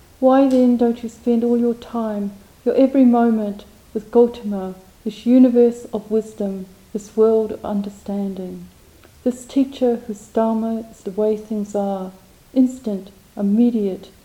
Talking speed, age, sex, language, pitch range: 135 wpm, 40-59, female, English, 200-235 Hz